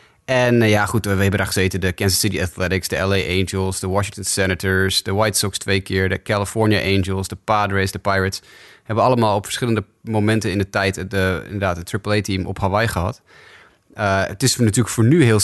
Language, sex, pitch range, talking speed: Dutch, male, 95-120 Hz, 205 wpm